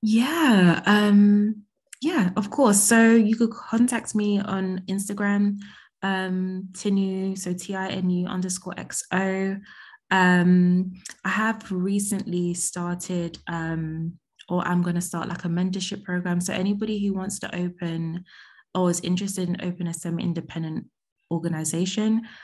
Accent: British